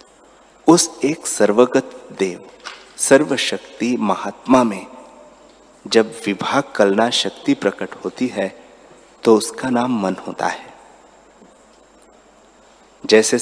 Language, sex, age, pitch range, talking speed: Hindi, male, 30-49, 105-135 Hz, 95 wpm